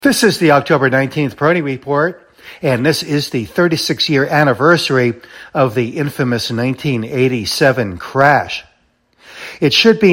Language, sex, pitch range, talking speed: English, male, 120-150 Hz, 125 wpm